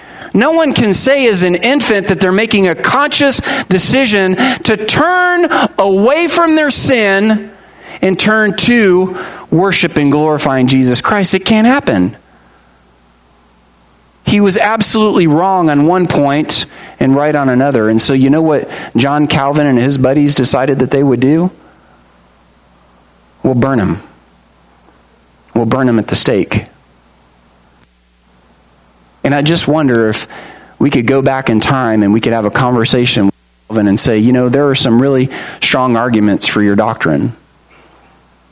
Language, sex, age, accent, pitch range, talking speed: English, male, 40-59, American, 105-170 Hz, 150 wpm